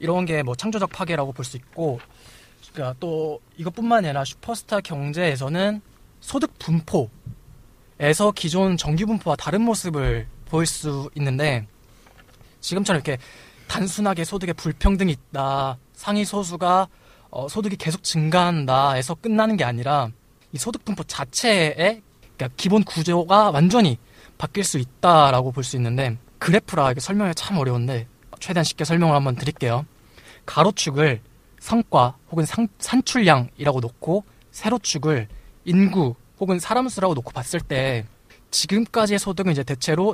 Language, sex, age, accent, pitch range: Korean, male, 20-39, native, 130-190 Hz